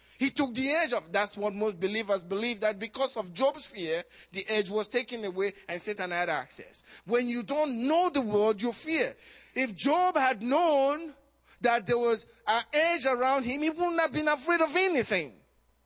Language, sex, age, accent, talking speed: English, male, 40-59, Nigerian, 190 wpm